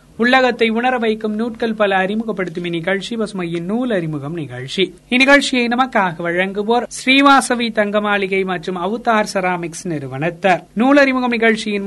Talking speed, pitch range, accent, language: 105 wpm, 170-225 Hz, native, Tamil